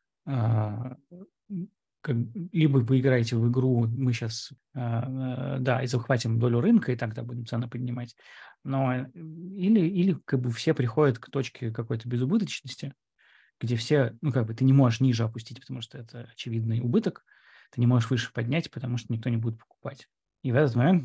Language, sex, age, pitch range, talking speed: Russian, male, 20-39, 115-135 Hz, 165 wpm